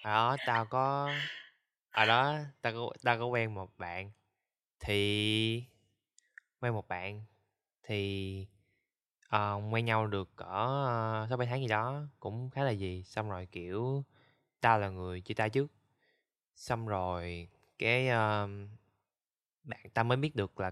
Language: Vietnamese